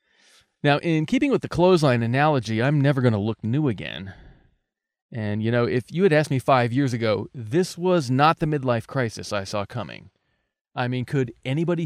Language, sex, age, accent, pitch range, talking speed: English, male, 30-49, American, 110-150 Hz, 190 wpm